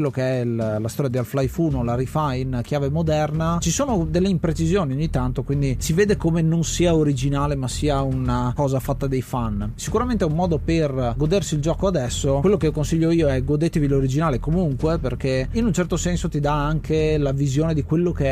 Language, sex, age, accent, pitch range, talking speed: Italian, male, 30-49, native, 130-165 Hz, 205 wpm